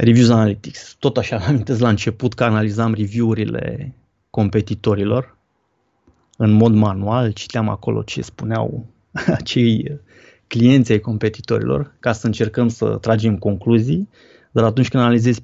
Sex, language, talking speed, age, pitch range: male, Romanian, 130 wpm, 20-39, 110-130 Hz